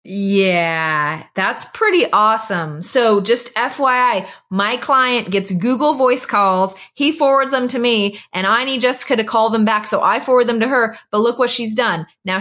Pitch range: 200-255 Hz